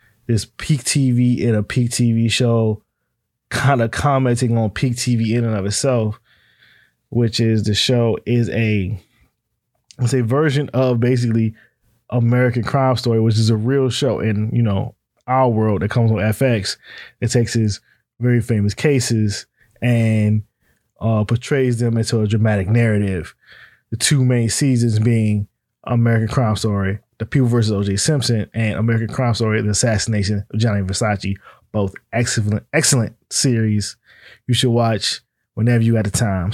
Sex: male